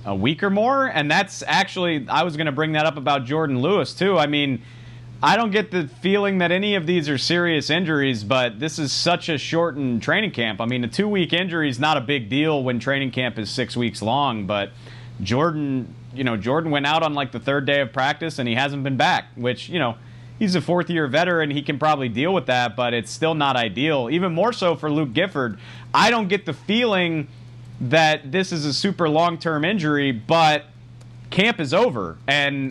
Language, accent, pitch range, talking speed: English, American, 120-160 Hz, 215 wpm